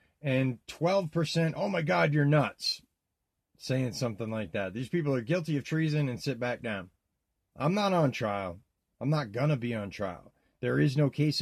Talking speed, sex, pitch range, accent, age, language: 190 wpm, male, 120-170 Hz, American, 40-59, English